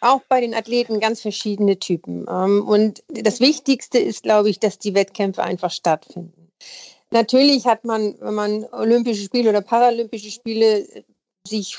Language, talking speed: German, 150 wpm